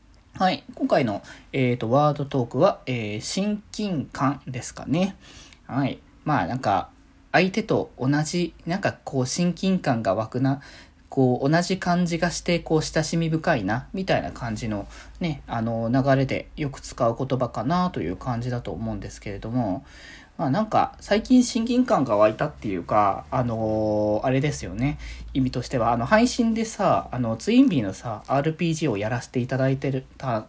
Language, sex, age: Japanese, male, 20-39